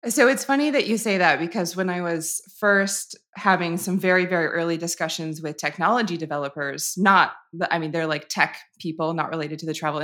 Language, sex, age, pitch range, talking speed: English, female, 20-39, 160-190 Hz, 195 wpm